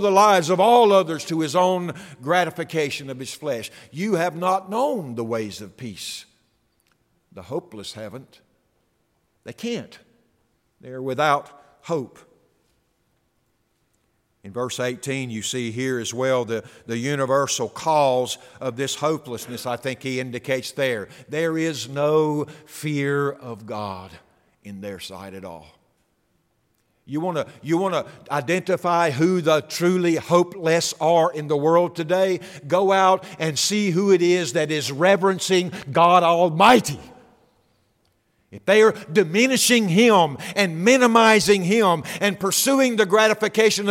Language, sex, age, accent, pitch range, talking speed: English, male, 60-79, American, 135-205 Hz, 135 wpm